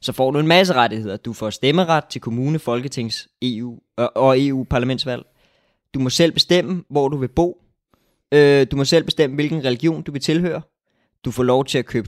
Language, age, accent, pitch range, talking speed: Danish, 20-39, native, 115-150 Hz, 190 wpm